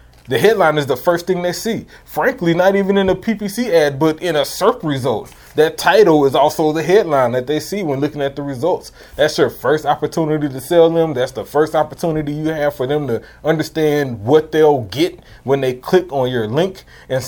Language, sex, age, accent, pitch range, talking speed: English, male, 30-49, American, 130-180 Hz, 210 wpm